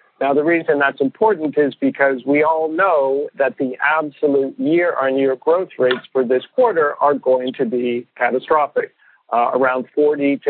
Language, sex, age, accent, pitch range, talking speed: English, male, 50-69, American, 125-150 Hz, 160 wpm